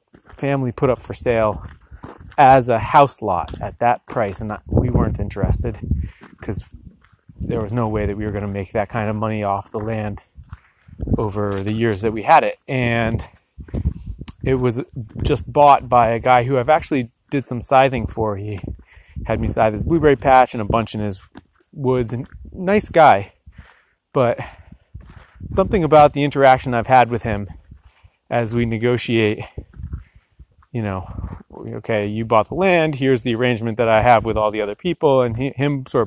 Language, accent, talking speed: English, American, 175 wpm